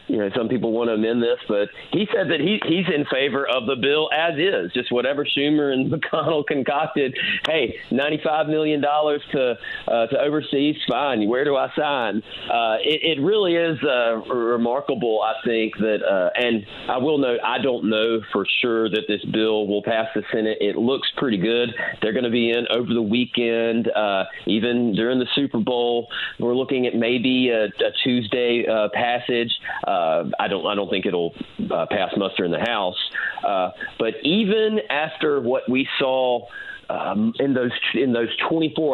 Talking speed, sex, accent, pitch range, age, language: 185 wpm, male, American, 115-145 Hz, 40-59, English